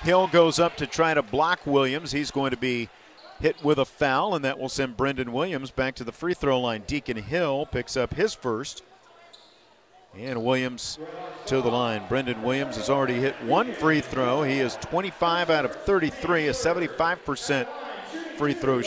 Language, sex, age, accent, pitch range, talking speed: English, male, 50-69, American, 130-160 Hz, 170 wpm